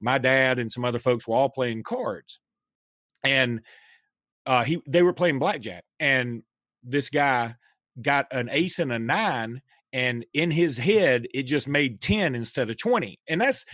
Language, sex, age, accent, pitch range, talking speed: English, male, 40-59, American, 125-175 Hz, 170 wpm